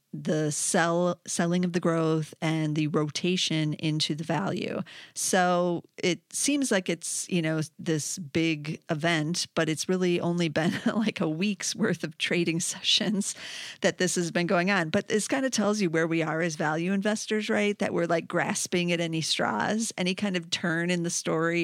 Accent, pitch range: American, 155-190 Hz